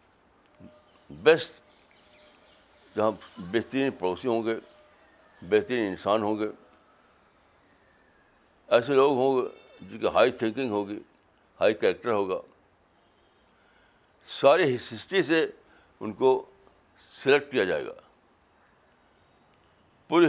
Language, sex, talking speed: Urdu, male, 95 wpm